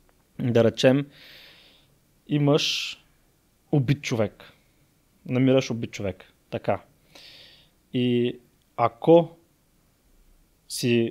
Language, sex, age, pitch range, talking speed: Bulgarian, male, 20-39, 110-135 Hz, 65 wpm